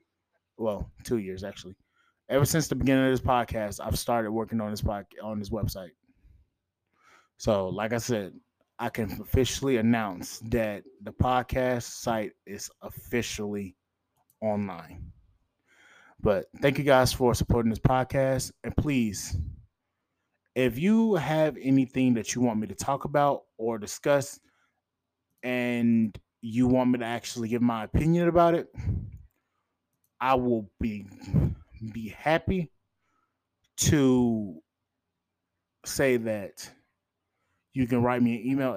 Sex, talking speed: male, 130 wpm